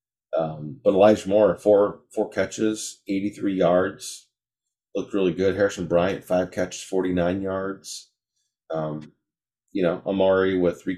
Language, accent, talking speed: English, American, 140 wpm